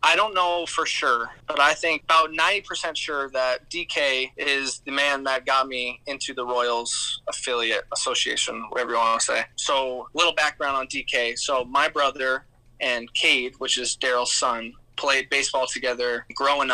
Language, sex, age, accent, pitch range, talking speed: English, male, 20-39, American, 125-150 Hz, 170 wpm